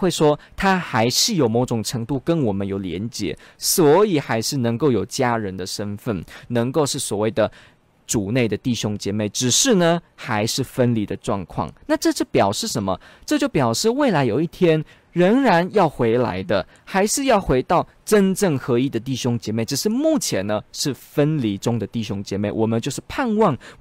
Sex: male